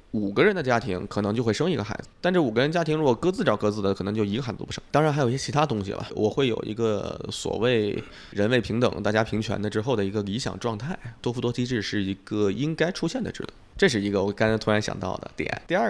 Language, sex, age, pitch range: Chinese, male, 20-39, 105-140 Hz